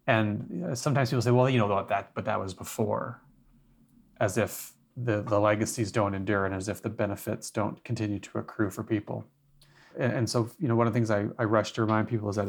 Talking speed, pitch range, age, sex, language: 225 wpm, 105-120 Hz, 30-49, male, English